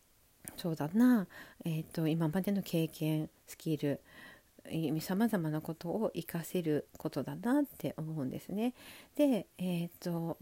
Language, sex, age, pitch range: Japanese, female, 50-69, 165-215 Hz